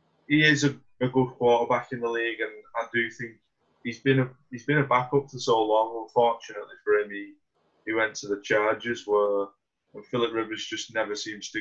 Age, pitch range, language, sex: 20-39, 105-125 Hz, English, male